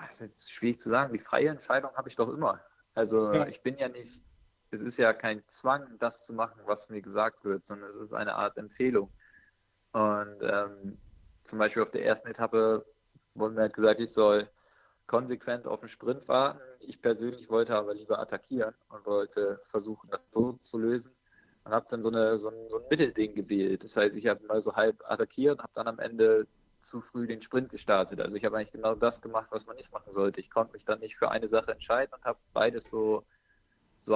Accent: German